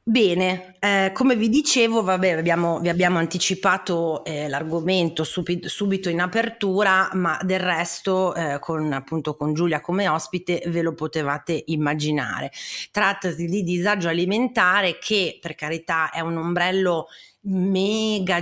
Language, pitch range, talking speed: Italian, 170-200 Hz, 135 wpm